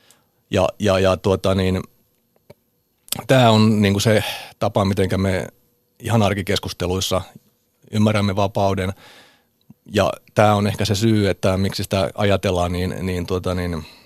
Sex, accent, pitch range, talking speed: male, native, 90-110 Hz, 130 wpm